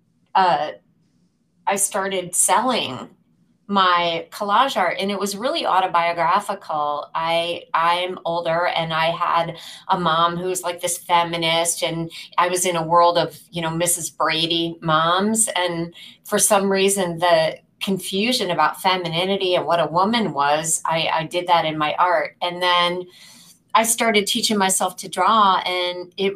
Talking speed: 155 wpm